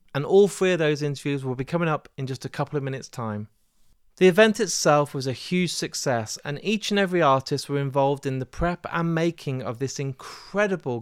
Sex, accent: male, British